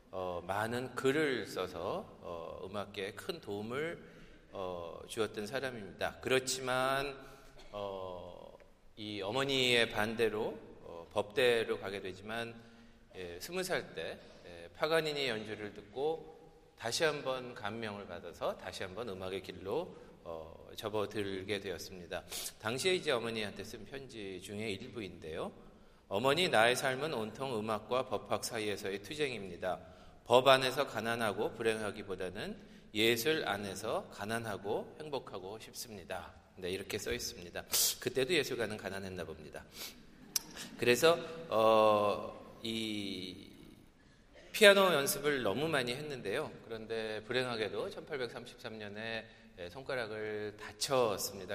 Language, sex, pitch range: Korean, male, 100-130 Hz